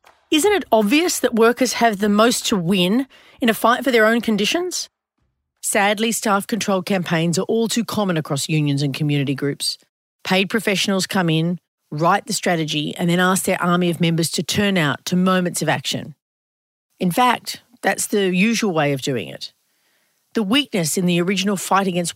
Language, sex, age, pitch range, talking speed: English, female, 40-59, 170-230 Hz, 180 wpm